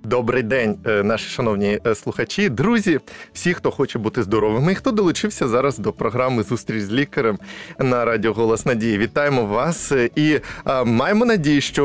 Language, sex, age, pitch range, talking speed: Ukrainian, male, 20-39, 120-165 Hz, 155 wpm